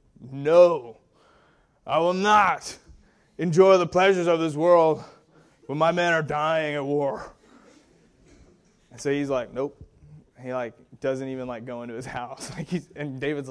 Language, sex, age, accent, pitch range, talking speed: English, male, 20-39, American, 125-165 Hz, 155 wpm